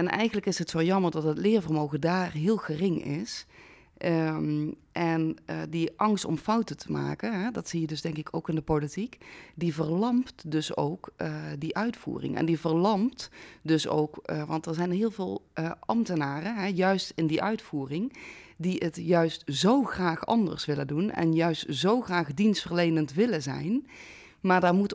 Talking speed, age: 175 wpm, 30-49